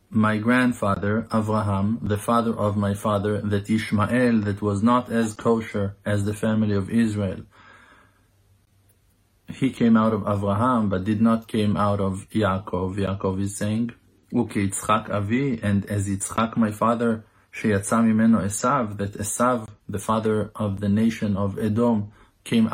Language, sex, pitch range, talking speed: English, male, 100-115 Hz, 140 wpm